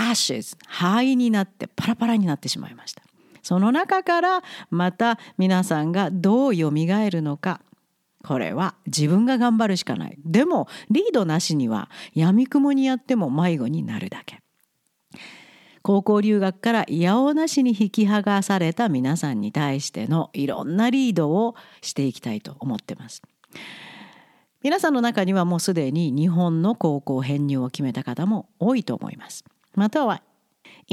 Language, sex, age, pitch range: Japanese, female, 50-69, 165-235 Hz